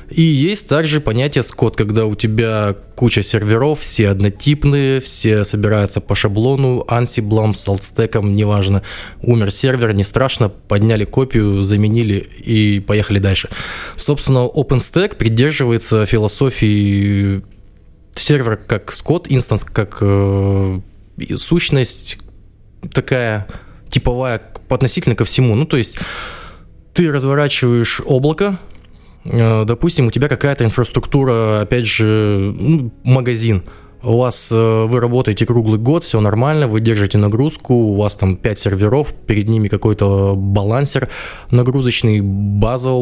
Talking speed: 115 wpm